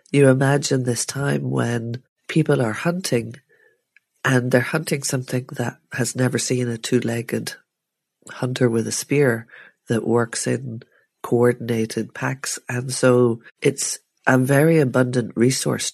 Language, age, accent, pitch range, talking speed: English, 40-59, Irish, 115-130 Hz, 130 wpm